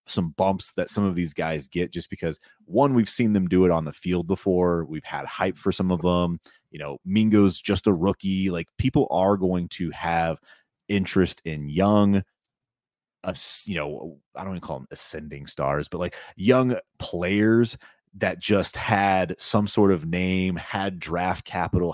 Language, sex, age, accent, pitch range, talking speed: English, male, 30-49, American, 85-100 Hz, 180 wpm